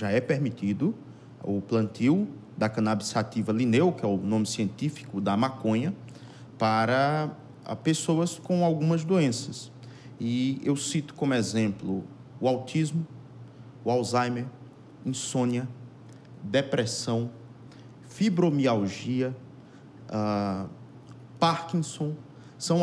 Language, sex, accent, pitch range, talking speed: Portuguese, male, Brazilian, 115-150 Hz, 95 wpm